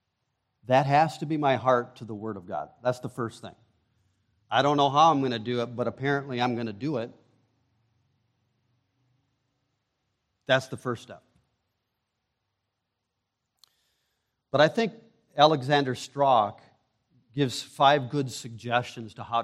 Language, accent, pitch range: English, American, 120-145 Hz